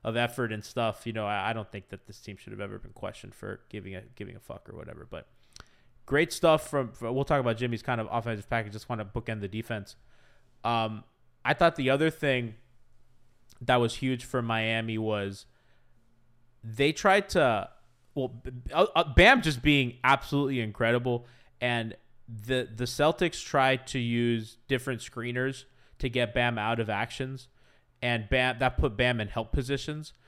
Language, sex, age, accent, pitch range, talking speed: English, male, 20-39, American, 115-135 Hz, 180 wpm